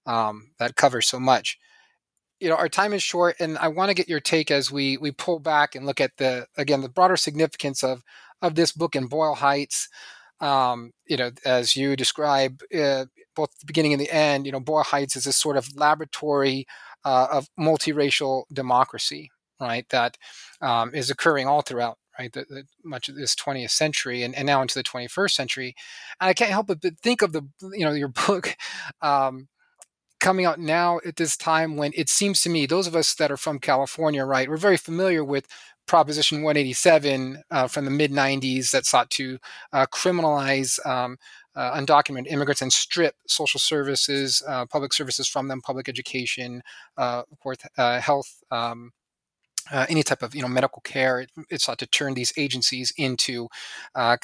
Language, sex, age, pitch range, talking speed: English, male, 30-49, 130-155 Hz, 185 wpm